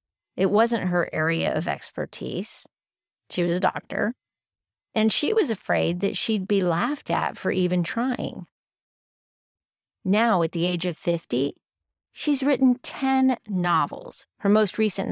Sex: female